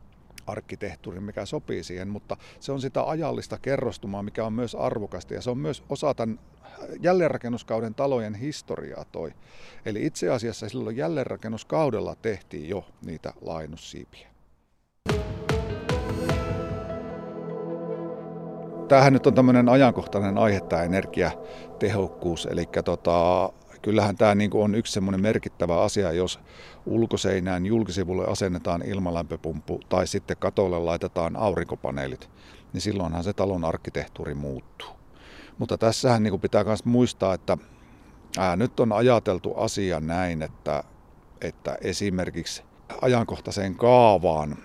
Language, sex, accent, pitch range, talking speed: Finnish, male, native, 85-115 Hz, 110 wpm